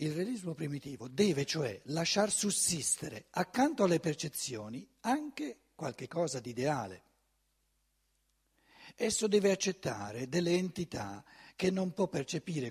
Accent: native